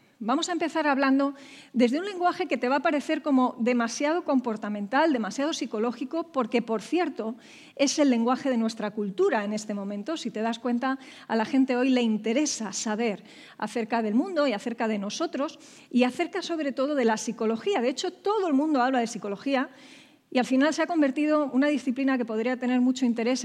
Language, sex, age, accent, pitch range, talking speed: English, female, 40-59, Spanish, 225-280 Hz, 190 wpm